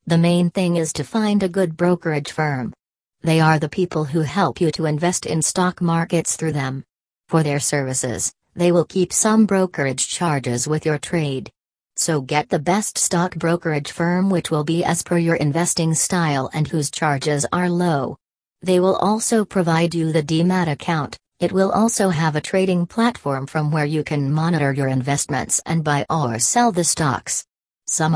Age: 40-59